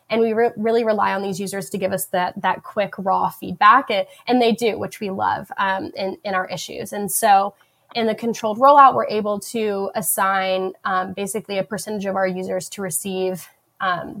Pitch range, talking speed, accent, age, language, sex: 190-220 Hz, 195 wpm, American, 10-29, English, female